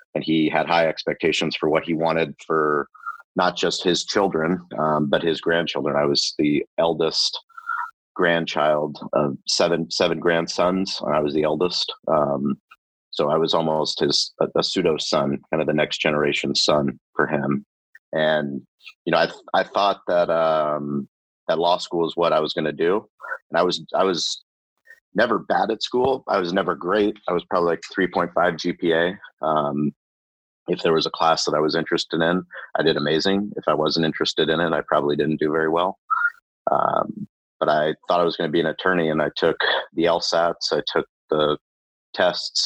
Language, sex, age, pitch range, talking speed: English, male, 30-49, 75-95 Hz, 185 wpm